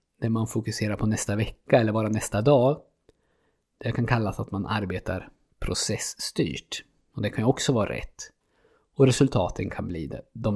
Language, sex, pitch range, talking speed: Swedish, male, 100-125 Hz, 165 wpm